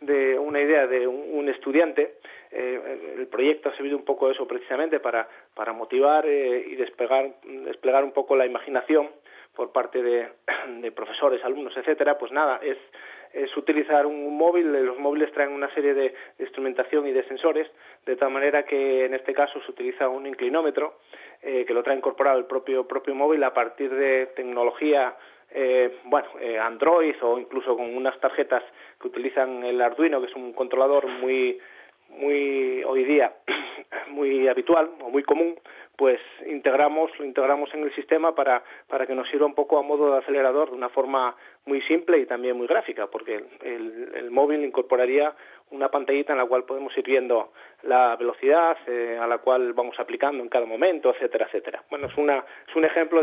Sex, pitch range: male, 130-150 Hz